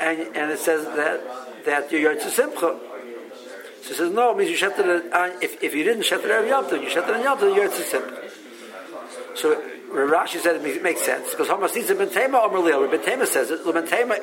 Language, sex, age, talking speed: English, male, 60-79, 205 wpm